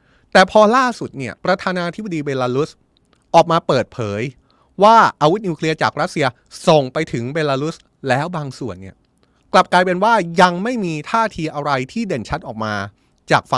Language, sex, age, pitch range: Thai, male, 20-39, 130-185 Hz